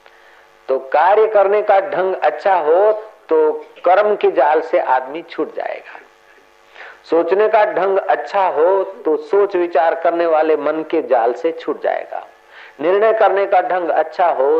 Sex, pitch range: male, 165-230 Hz